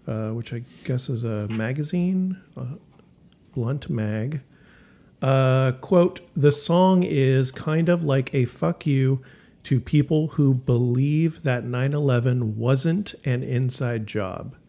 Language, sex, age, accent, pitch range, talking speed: English, male, 40-59, American, 110-140 Hz, 130 wpm